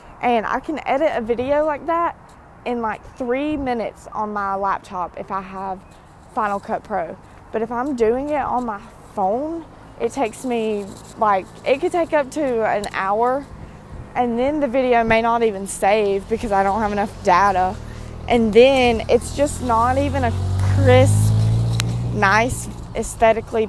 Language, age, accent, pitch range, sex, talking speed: English, 20-39, American, 200-245 Hz, female, 160 wpm